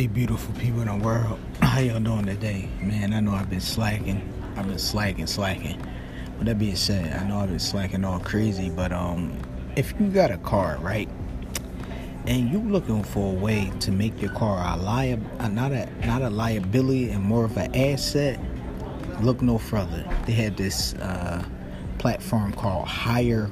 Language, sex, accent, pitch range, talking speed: English, male, American, 95-110 Hz, 180 wpm